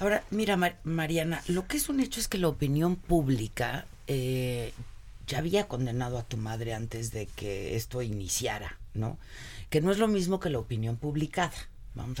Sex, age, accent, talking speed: female, 40-59, Mexican, 180 wpm